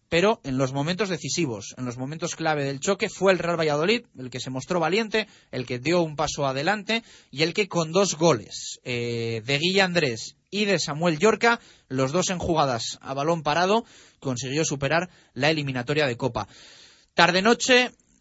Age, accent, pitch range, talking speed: 30-49, Spanish, 130-175 Hz, 180 wpm